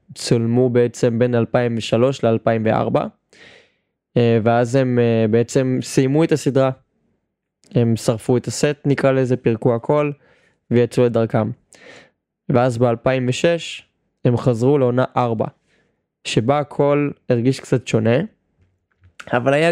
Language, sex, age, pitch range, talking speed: Hebrew, male, 20-39, 115-135 Hz, 105 wpm